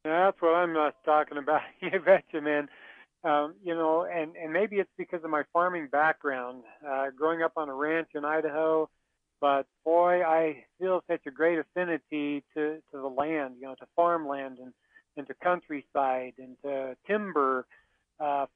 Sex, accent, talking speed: male, American, 180 wpm